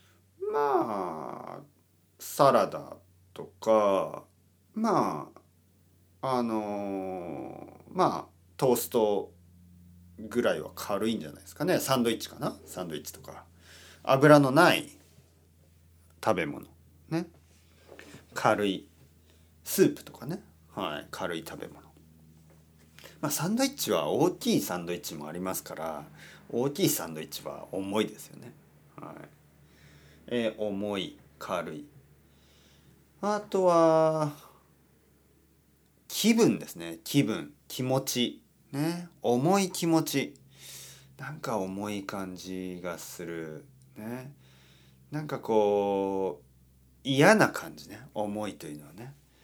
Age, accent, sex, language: 40-59, native, male, Japanese